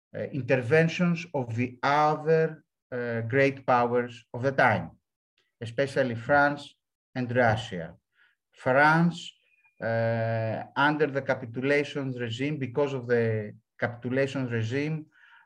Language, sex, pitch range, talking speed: English, male, 115-155 Hz, 100 wpm